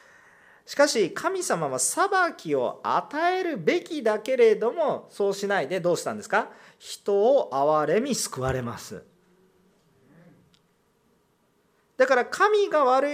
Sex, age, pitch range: male, 40-59, 185-275 Hz